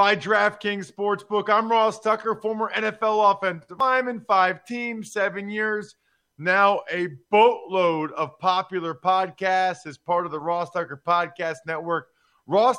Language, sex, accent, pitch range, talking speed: English, male, American, 155-200 Hz, 135 wpm